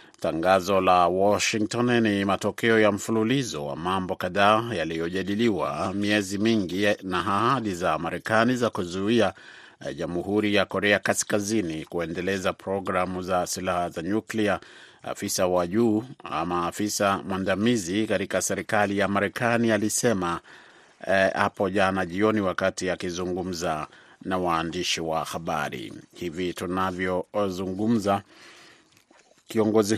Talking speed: 110 wpm